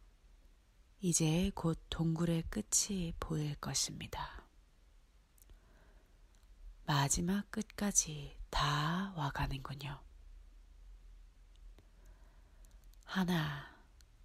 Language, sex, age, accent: Korean, female, 40-59, native